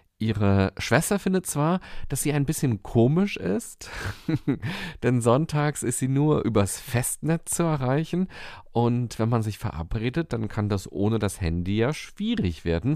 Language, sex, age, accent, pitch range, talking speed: German, male, 40-59, German, 95-130 Hz, 155 wpm